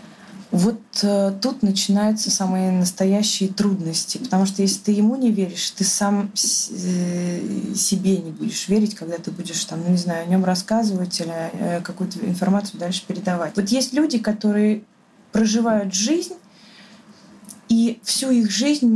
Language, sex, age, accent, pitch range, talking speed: Russian, female, 20-39, native, 185-215 Hz, 140 wpm